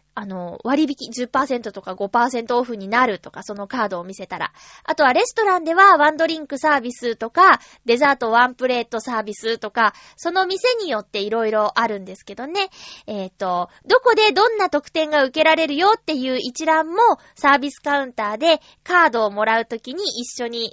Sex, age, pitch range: female, 20-39, 230-340 Hz